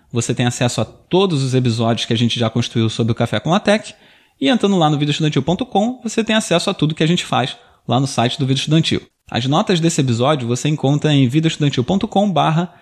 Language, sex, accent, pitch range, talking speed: Portuguese, male, Brazilian, 130-175 Hz, 215 wpm